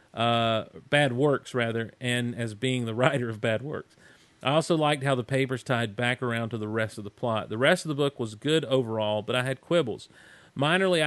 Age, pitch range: 40-59, 115-145 Hz